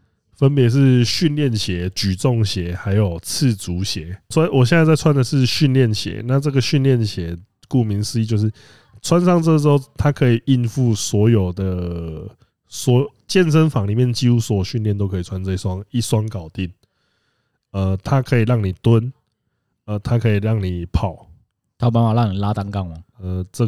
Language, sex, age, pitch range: Chinese, male, 20-39, 100-130 Hz